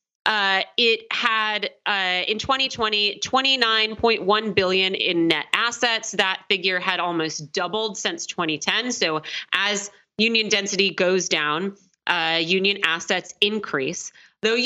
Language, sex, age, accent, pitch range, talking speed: English, female, 30-49, American, 180-225 Hz, 115 wpm